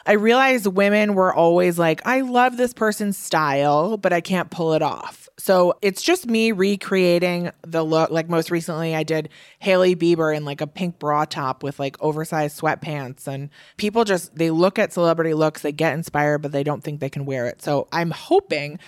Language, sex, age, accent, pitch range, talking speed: English, female, 20-39, American, 155-195 Hz, 200 wpm